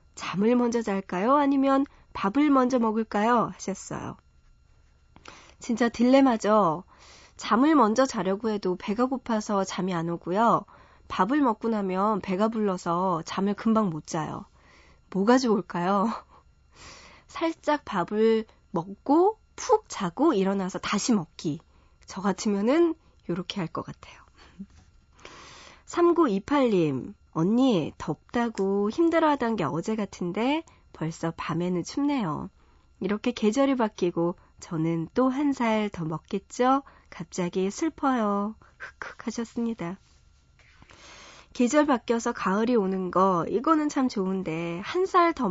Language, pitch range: Korean, 175-245 Hz